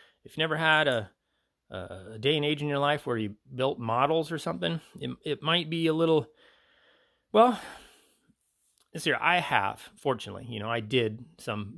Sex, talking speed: male, 180 wpm